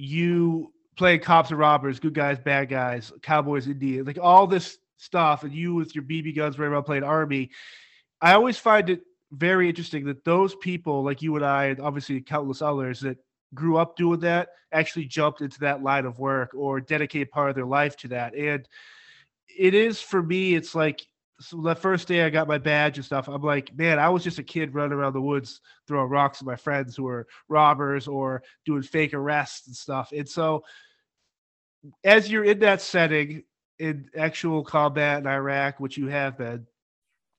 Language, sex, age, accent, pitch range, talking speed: English, male, 20-39, American, 140-165 Hz, 195 wpm